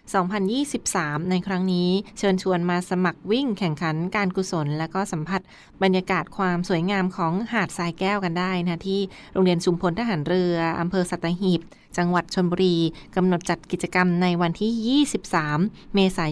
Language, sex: Thai, female